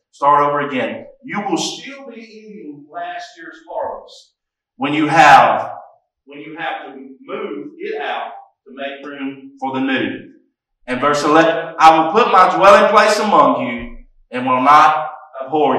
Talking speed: 160 wpm